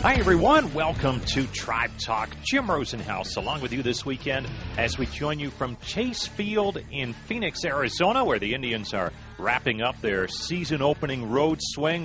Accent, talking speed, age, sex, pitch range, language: American, 165 wpm, 40-59, male, 100-135 Hz, English